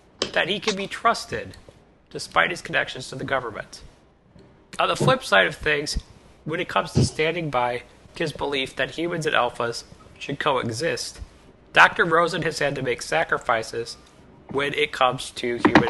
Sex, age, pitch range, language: male, 30-49, 130-165 Hz, English